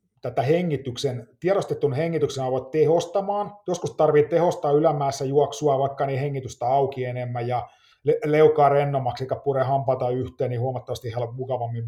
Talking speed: 125 wpm